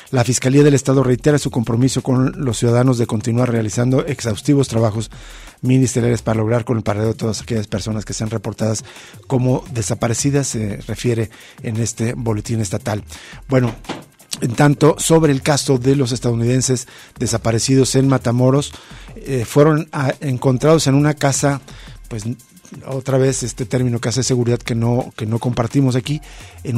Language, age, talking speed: Spanish, 50-69, 155 wpm